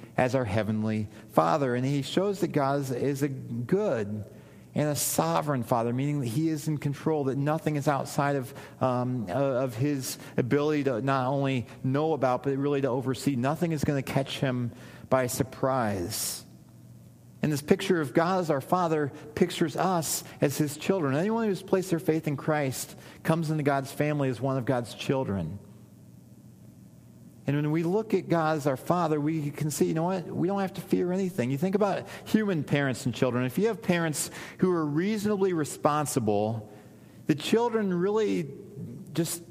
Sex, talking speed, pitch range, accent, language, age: male, 180 wpm, 125-165 Hz, American, English, 40-59